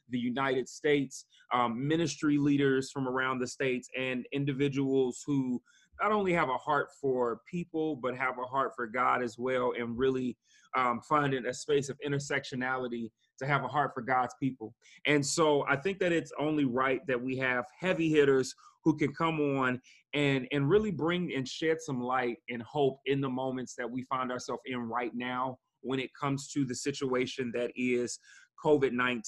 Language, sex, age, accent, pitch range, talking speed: English, male, 30-49, American, 125-150 Hz, 180 wpm